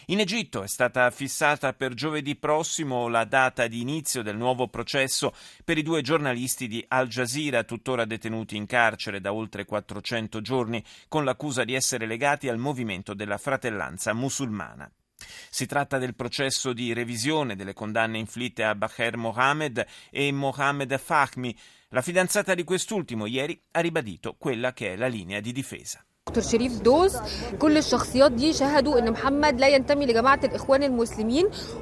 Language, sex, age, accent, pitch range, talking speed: Italian, male, 30-49, native, 120-180 Hz, 130 wpm